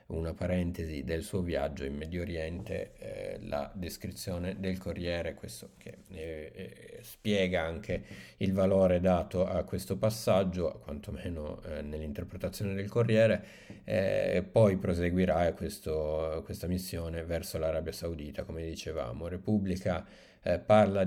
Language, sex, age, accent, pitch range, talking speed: Italian, male, 50-69, native, 80-95 Hz, 130 wpm